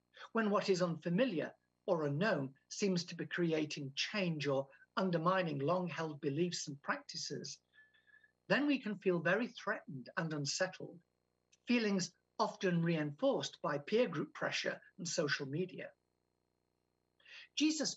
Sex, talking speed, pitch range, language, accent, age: male, 120 wpm, 145-195 Hz, English, British, 50-69